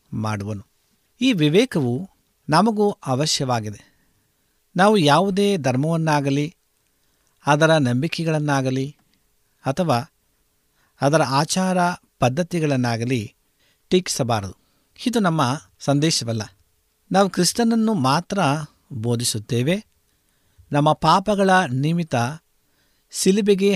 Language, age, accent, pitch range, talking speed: Kannada, 50-69, native, 120-170 Hz, 65 wpm